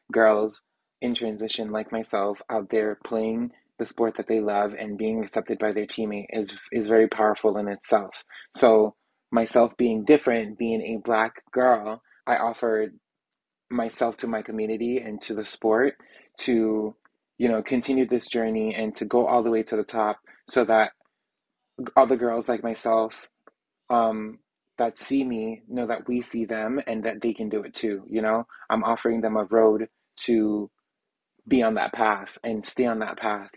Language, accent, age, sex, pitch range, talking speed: English, American, 20-39, male, 110-115 Hz, 175 wpm